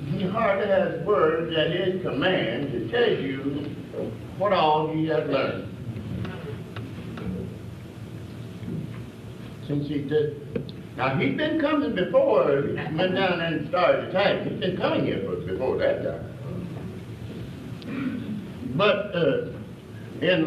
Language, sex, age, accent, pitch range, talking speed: English, male, 60-79, American, 120-160 Hz, 120 wpm